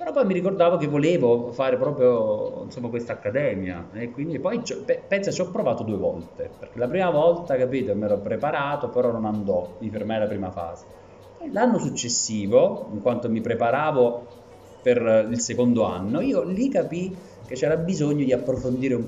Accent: native